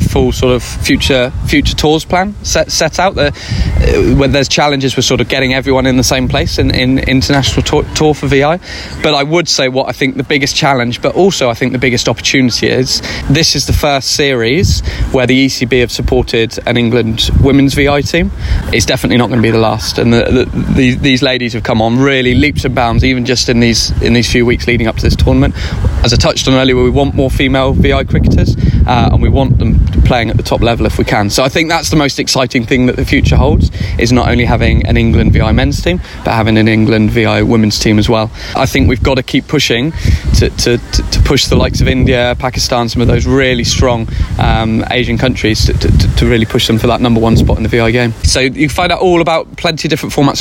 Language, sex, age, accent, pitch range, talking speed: English, male, 20-39, British, 115-140 Hz, 240 wpm